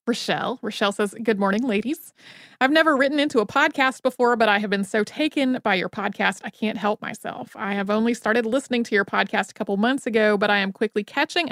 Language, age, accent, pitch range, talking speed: English, 30-49, American, 205-245 Hz, 225 wpm